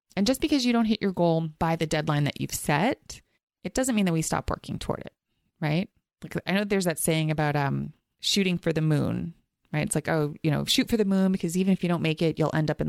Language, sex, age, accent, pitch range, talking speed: English, female, 30-49, American, 160-230 Hz, 265 wpm